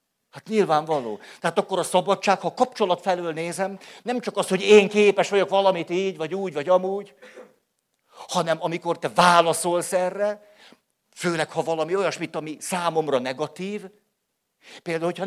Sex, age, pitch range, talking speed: male, 50-69, 155-195 Hz, 150 wpm